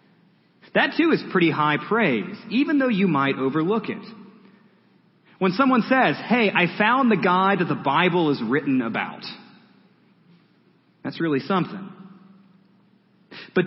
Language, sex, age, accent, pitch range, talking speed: English, male, 30-49, American, 180-225 Hz, 130 wpm